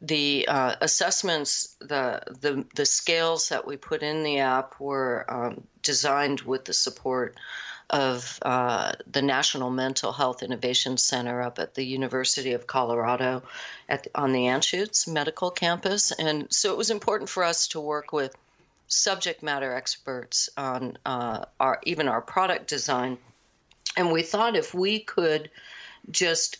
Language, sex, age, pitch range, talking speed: English, female, 50-69, 130-165 Hz, 150 wpm